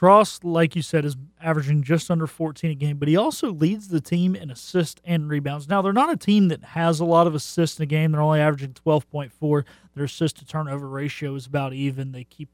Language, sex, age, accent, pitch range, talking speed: English, male, 30-49, American, 140-175 Hz, 230 wpm